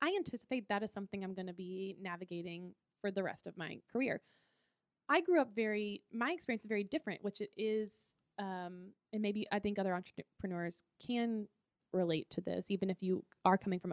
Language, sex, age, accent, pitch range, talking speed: English, female, 20-39, American, 185-220 Hz, 190 wpm